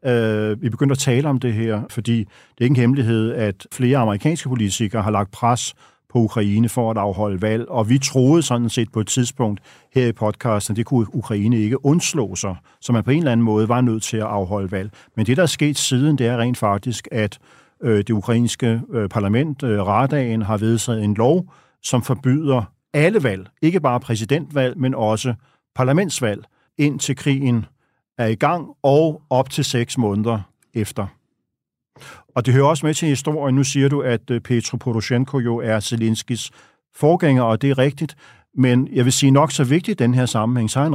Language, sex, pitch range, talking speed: Danish, male, 115-140 Hz, 195 wpm